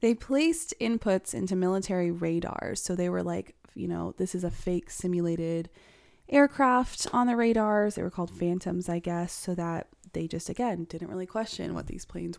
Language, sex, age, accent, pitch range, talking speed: English, female, 20-39, American, 170-210 Hz, 185 wpm